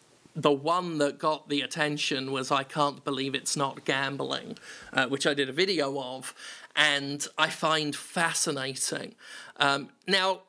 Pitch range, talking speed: 140-175 Hz, 150 wpm